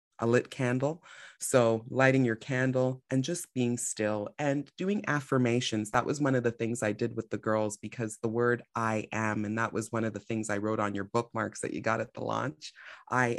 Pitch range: 105-120 Hz